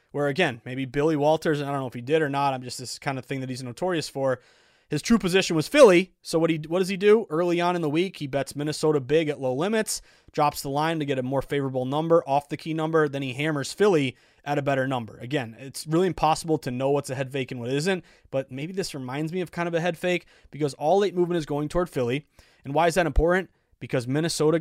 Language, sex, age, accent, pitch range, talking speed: English, male, 20-39, American, 135-175 Hz, 260 wpm